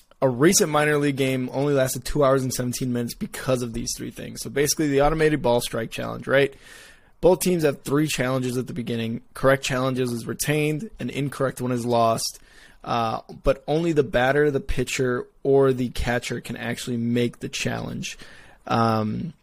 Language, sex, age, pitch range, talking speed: English, male, 20-39, 120-140 Hz, 180 wpm